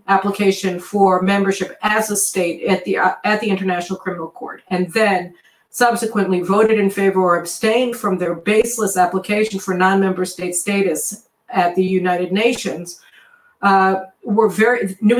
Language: English